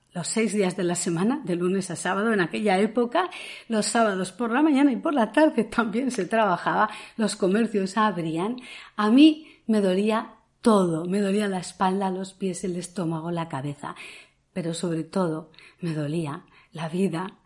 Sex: female